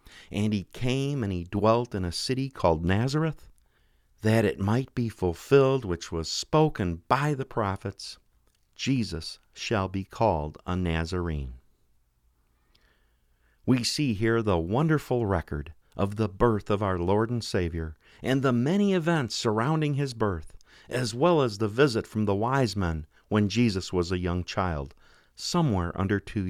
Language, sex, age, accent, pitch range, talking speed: English, male, 50-69, American, 85-130 Hz, 150 wpm